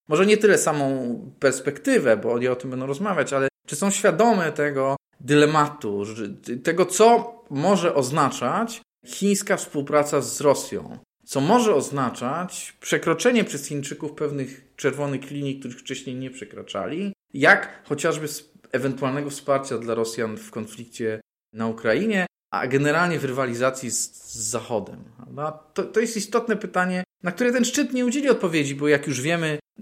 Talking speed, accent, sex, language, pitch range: 145 wpm, native, male, Polish, 120-165 Hz